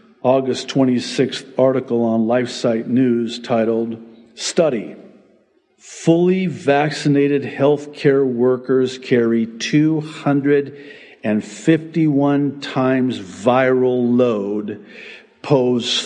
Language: English